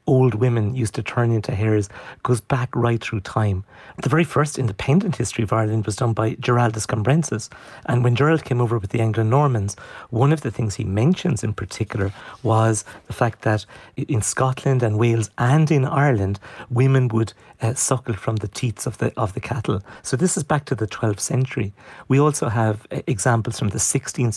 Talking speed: 190 wpm